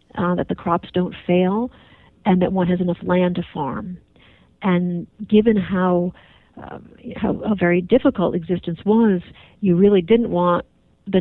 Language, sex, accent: English, female, American